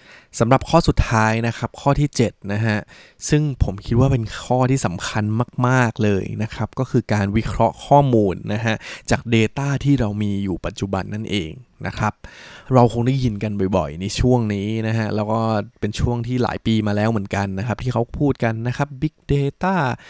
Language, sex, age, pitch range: Thai, male, 20-39, 105-130 Hz